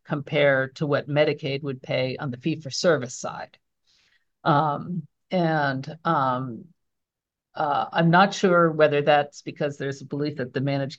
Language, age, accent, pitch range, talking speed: English, 50-69, American, 145-175 Hz, 155 wpm